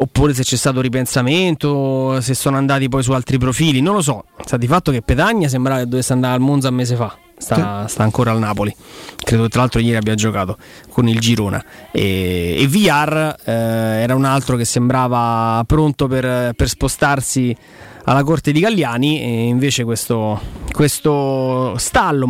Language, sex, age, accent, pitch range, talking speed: Italian, male, 20-39, native, 120-145 Hz, 175 wpm